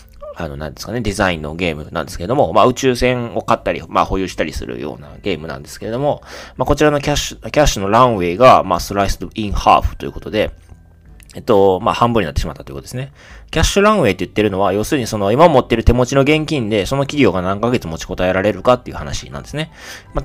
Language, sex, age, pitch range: Japanese, male, 20-39, 90-125 Hz